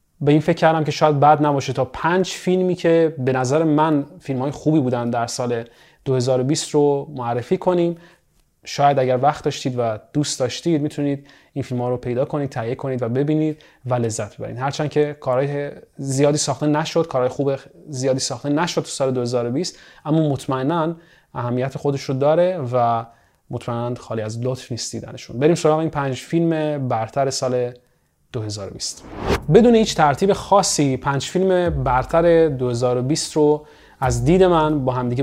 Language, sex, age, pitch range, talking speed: Persian, male, 30-49, 125-155 Hz, 150 wpm